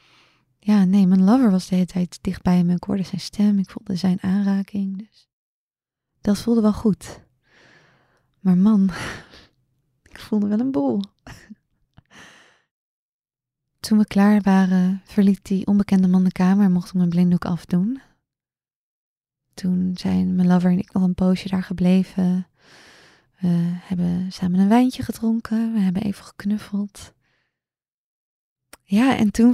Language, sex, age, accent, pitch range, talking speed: Dutch, female, 20-39, Dutch, 185-225 Hz, 140 wpm